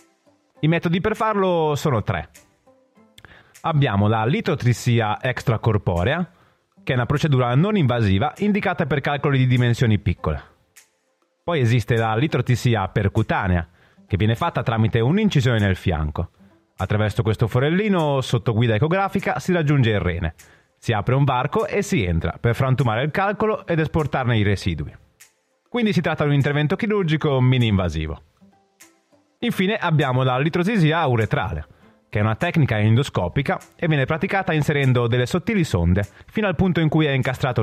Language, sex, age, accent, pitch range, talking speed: Italian, male, 30-49, native, 105-165 Hz, 145 wpm